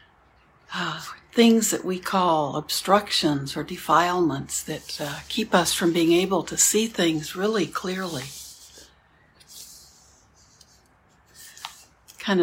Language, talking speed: English, 100 wpm